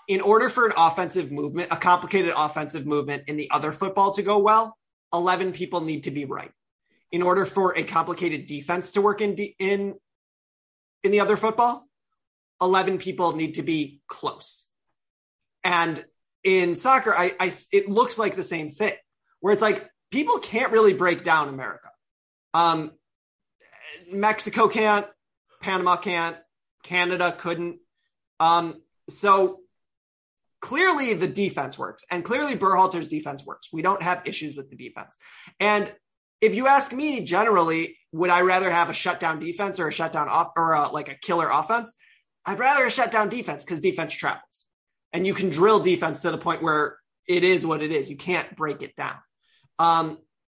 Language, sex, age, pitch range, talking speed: English, male, 30-49, 165-210 Hz, 165 wpm